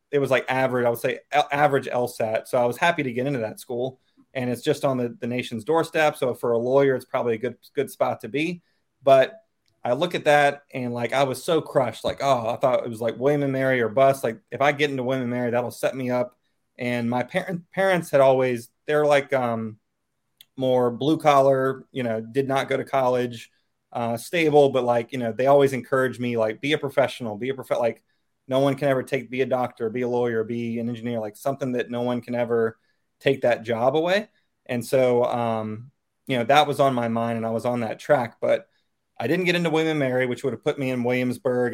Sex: male